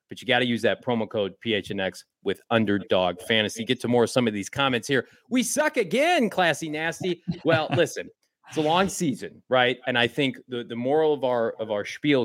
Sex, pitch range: male, 125-175 Hz